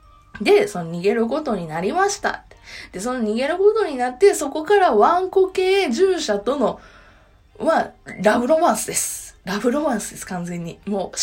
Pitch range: 205-340 Hz